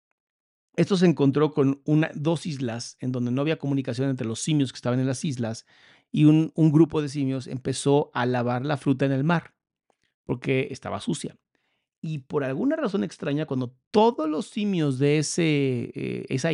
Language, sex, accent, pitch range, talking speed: Spanish, male, Mexican, 130-165 Hz, 175 wpm